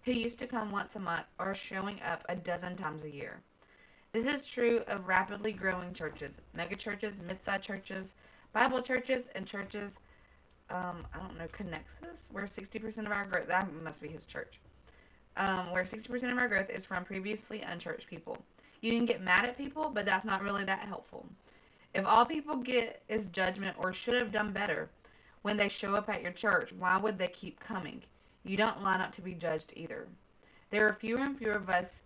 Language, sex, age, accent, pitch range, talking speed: English, female, 20-39, American, 180-225 Hz, 200 wpm